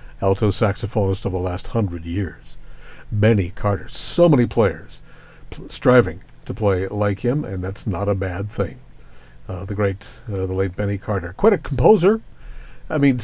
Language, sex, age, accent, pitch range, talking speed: English, male, 60-79, American, 95-140 Hz, 165 wpm